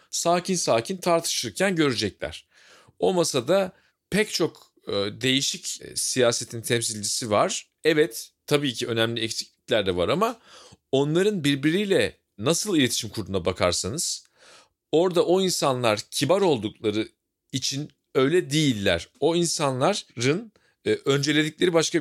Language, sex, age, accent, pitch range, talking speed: Turkish, male, 40-59, native, 120-170 Hz, 105 wpm